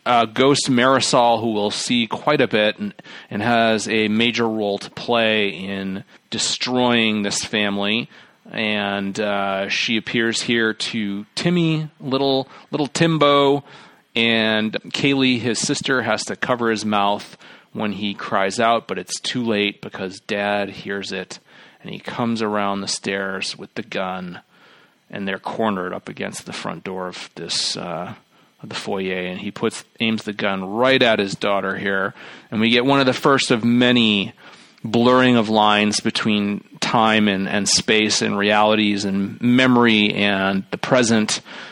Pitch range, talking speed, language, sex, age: 100-120 Hz, 155 wpm, English, male, 30-49